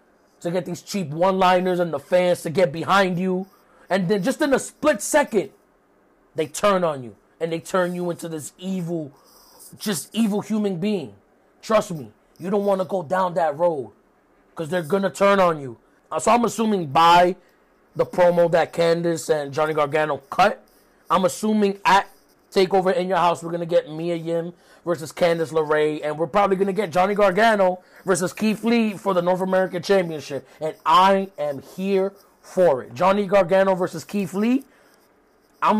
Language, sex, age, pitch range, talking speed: English, male, 20-39, 165-200 Hz, 180 wpm